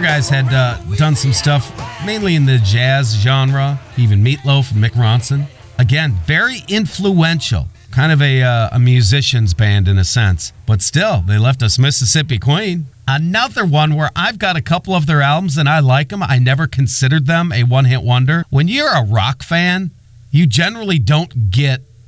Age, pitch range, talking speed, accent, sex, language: 40-59, 115-150 Hz, 180 wpm, American, male, English